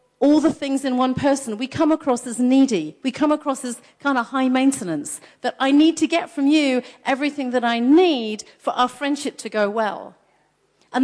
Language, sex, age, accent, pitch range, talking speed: English, female, 40-59, British, 235-310 Hz, 200 wpm